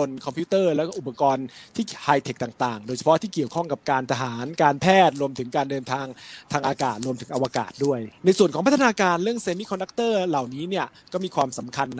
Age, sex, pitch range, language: 20-39, male, 135-175 Hz, Thai